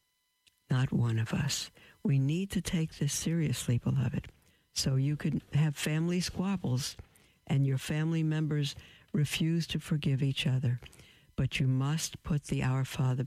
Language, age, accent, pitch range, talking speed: English, 60-79, American, 125-155 Hz, 150 wpm